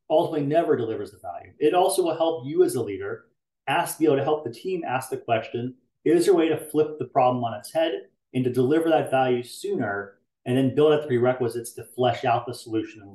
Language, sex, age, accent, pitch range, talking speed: English, male, 30-49, American, 115-155 Hz, 240 wpm